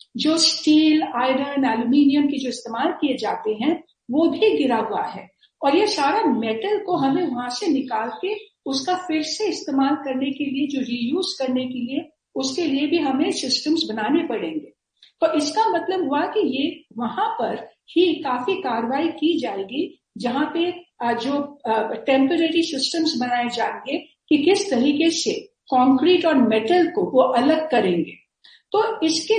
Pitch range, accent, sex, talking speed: 250-330 Hz, native, female, 155 wpm